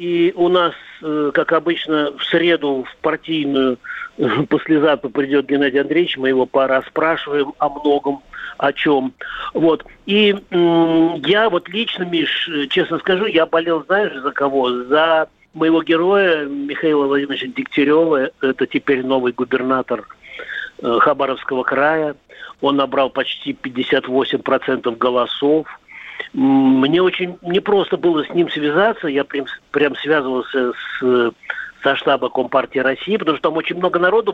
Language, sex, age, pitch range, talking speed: Russian, male, 50-69, 140-175 Hz, 130 wpm